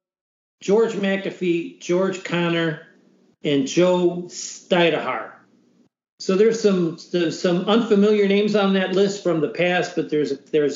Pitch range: 160-195 Hz